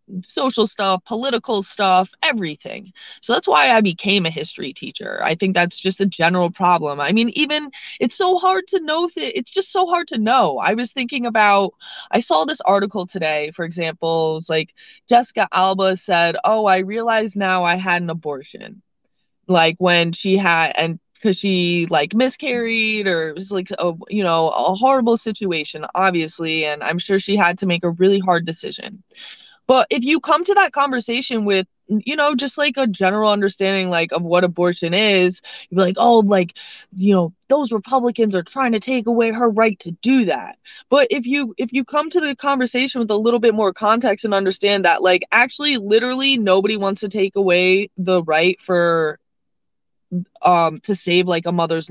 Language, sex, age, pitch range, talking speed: English, female, 20-39, 175-235 Hz, 190 wpm